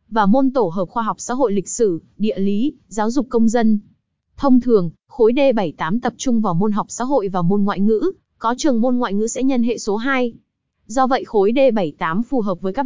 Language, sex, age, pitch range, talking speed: Vietnamese, female, 20-39, 195-255 Hz, 230 wpm